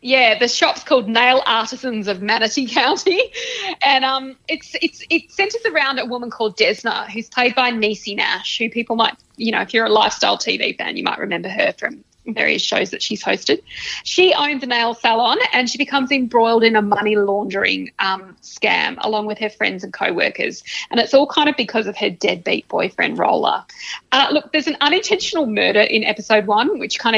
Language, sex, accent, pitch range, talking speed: English, female, Australian, 220-300 Hz, 195 wpm